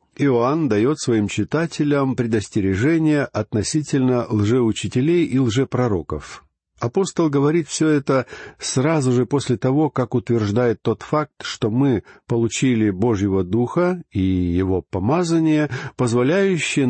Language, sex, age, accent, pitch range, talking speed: Russian, male, 50-69, native, 105-140 Hz, 105 wpm